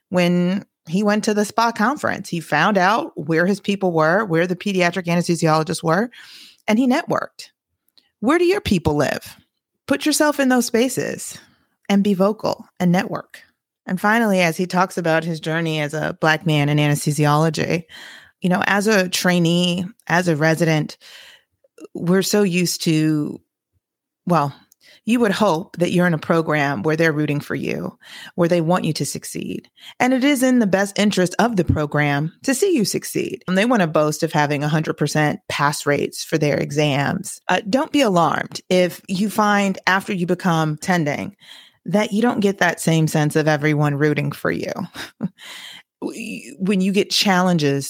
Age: 30-49